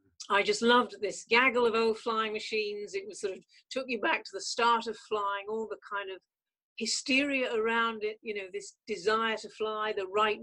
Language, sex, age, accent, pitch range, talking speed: English, female, 50-69, British, 200-290 Hz, 205 wpm